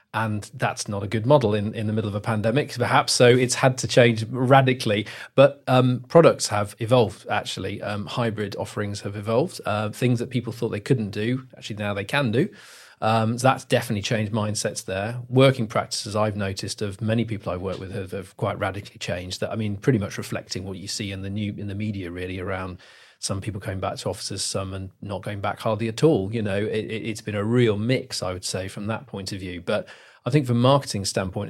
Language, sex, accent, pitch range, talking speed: English, male, British, 100-125 Hz, 230 wpm